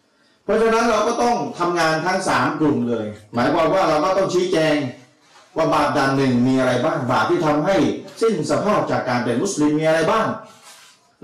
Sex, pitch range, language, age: male, 150-205 Hz, Thai, 30-49